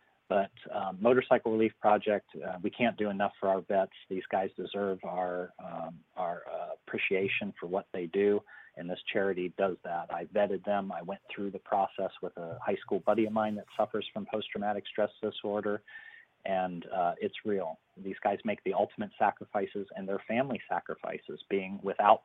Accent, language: American, English